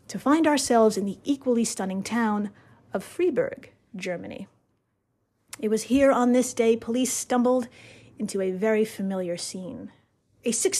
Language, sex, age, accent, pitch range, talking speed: English, female, 30-49, American, 205-270 Hz, 140 wpm